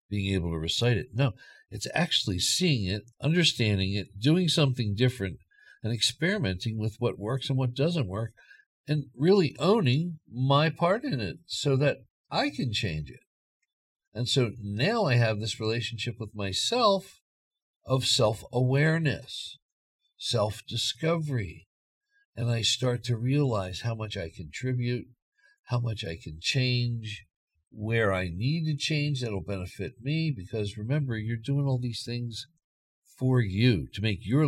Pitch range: 100-135 Hz